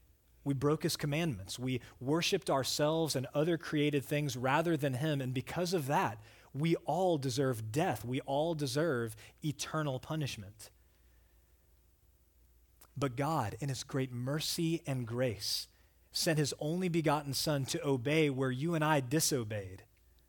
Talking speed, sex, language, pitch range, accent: 140 wpm, male, English, 105-155 Hz, American